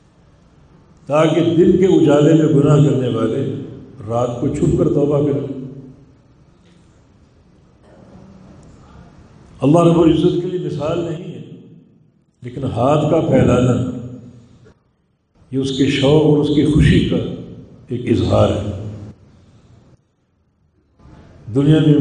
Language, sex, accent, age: English, male, Indian, 50-69